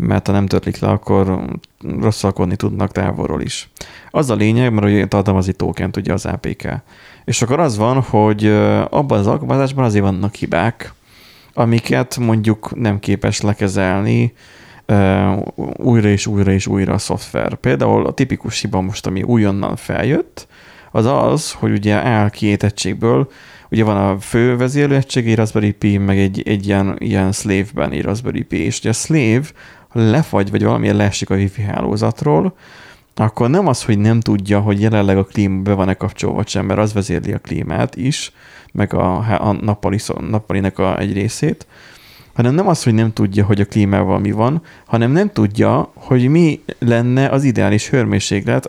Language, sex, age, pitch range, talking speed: Hungarian, male, 30-49, 100-115 Hz, 160 wpm